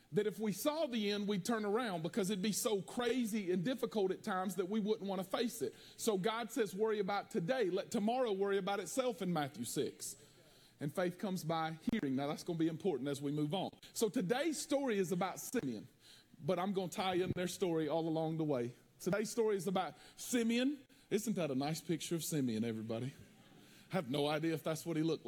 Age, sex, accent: 40-59, male, American